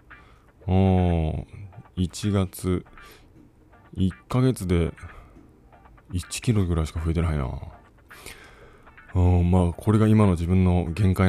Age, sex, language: 20-39, male, Japanese